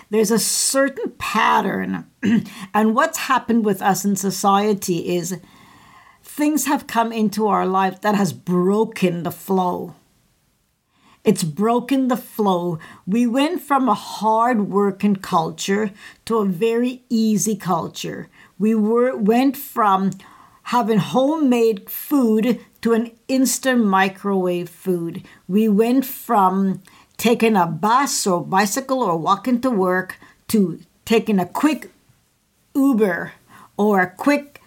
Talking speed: 120 wpm